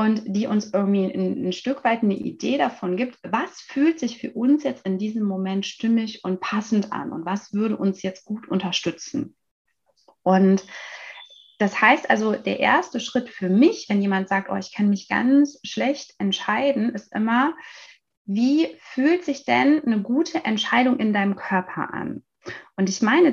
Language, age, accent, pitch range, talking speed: German, 30-49, German, 195-255 Hz, 170 wpm